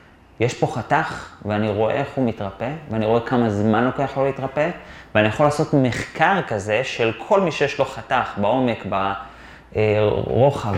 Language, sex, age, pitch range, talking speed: Hebrew, male, 30-49, 115-150 Hz, 155 wpm